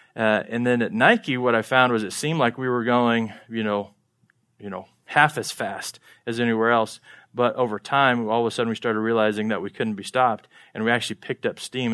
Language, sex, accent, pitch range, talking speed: English, male, American, 110-130 Hz, 230 wpm